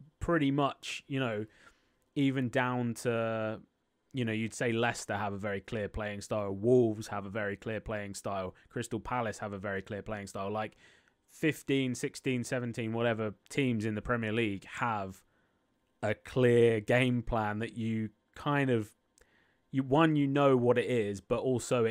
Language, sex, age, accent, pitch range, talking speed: English, male, 20-39, British, 110-130 Hz, 165 wpm